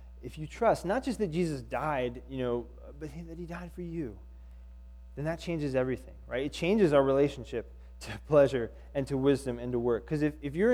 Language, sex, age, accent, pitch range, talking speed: English, male, 20-39, American, 120-160 Hz, 205 wpm